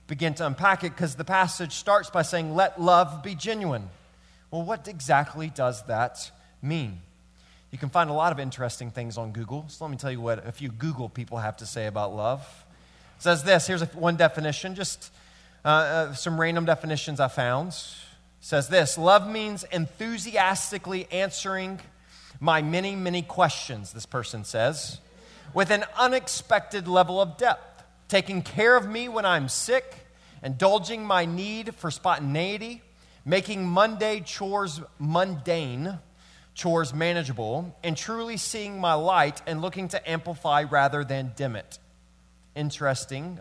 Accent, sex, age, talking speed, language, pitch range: American, male, 30-49, 155 wpm, English, 130-185 Hz